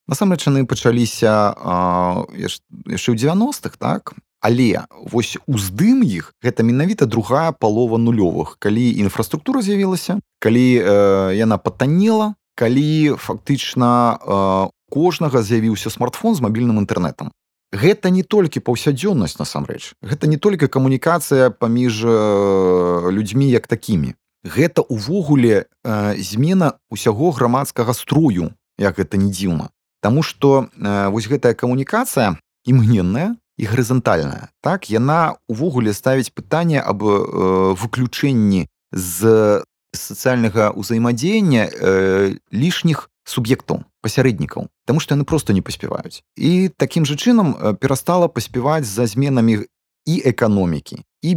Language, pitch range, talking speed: Russian, 105-150 Hz, 120 wpm